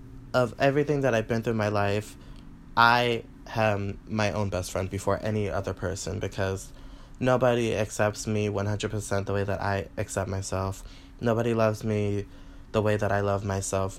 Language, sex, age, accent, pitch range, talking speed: English, male, 20-39, American, 100-115 Hz, 165 wpm